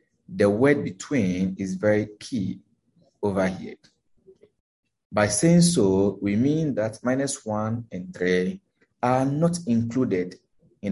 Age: 30-49